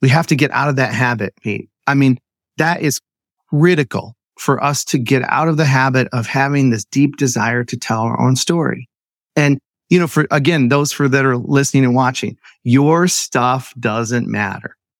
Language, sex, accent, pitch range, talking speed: English, male, American, 130-170 Hz, 190 wpm